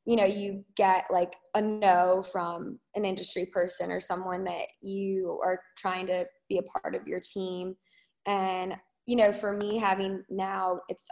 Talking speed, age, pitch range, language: 175 wpm, 20-39, 185-215 Hz, English